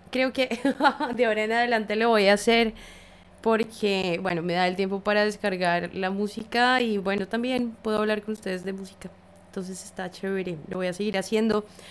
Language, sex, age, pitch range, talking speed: English, female, 20-39, 185-230 Hz, 185 wpm